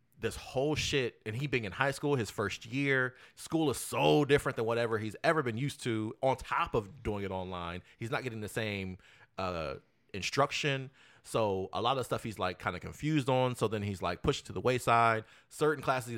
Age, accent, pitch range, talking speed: 30-49, American, 95-135 Hz, 215 wpm